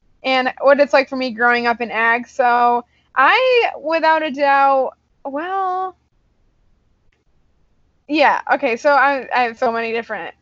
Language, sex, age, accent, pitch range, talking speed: English, female, 10-29, American, 240-285 Hz, 145 wpm